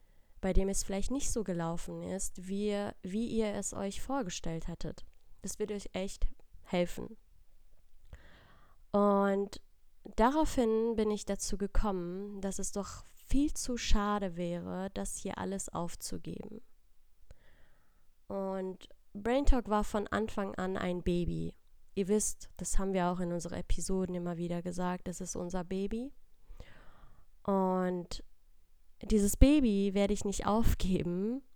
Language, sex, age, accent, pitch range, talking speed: German, female, 20-39, German, 175-205 Hz, 130 wpm